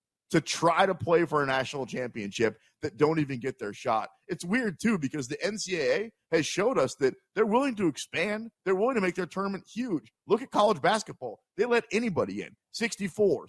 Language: English